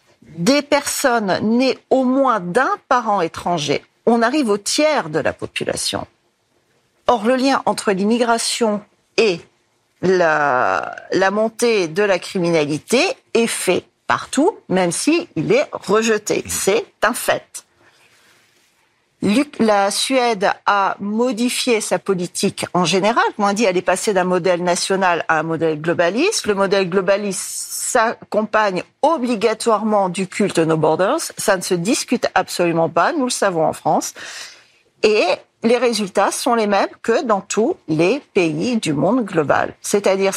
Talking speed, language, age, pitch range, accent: 140 wpm, French, 40-59, 180-240 Hz, French